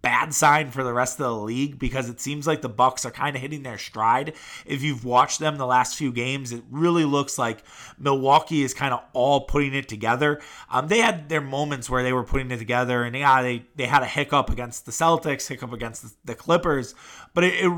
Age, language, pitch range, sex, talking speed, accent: 20-39, English, 130-155 Hz, male, 235 wpm, American